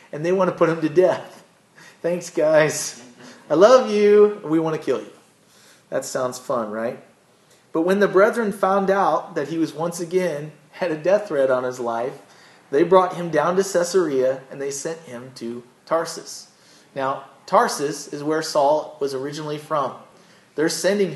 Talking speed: 175 wpm